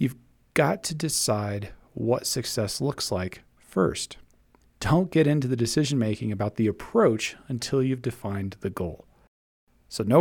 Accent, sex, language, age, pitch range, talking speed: American, male, English, 40-59, 100-135 Hz, 135 wpm